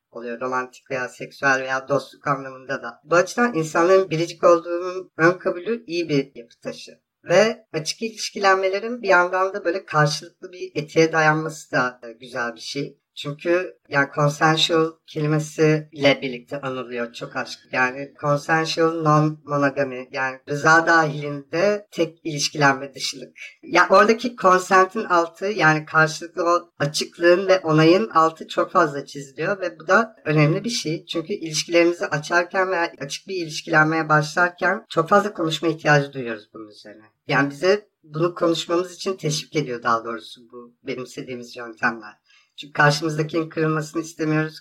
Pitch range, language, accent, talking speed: 140-175 Hz, Turkish, native, 145 wpm